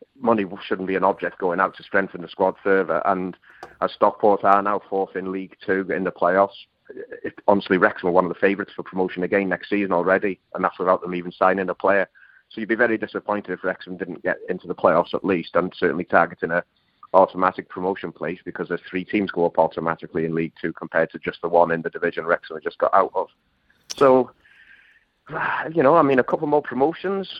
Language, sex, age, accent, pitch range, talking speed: English, male, 30-49, British, 90-105 Hz, 215 wpm